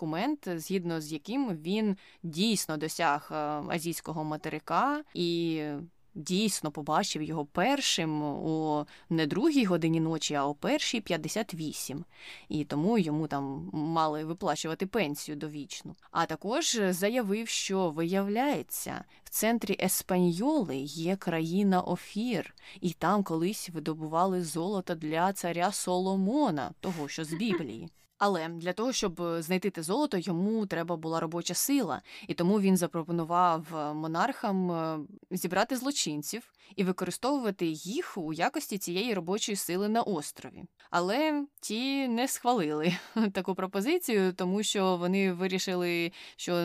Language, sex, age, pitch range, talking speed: Ukrainian, female, 20-39, 160-195 Hz, 120 wpm